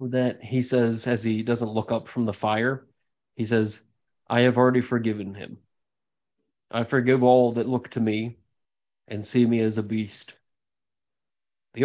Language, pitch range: English, 115-130 Hz